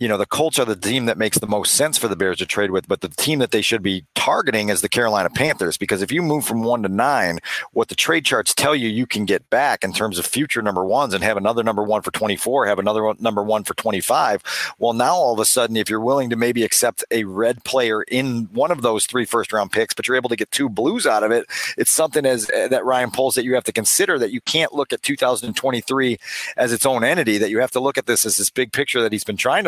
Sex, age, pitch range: male, 40-59, 115-140 Hz